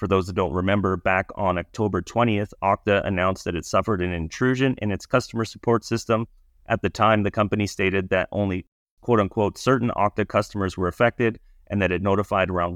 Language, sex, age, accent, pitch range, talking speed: English, male, 30-49, American, 90-105 Hz, 190 wpm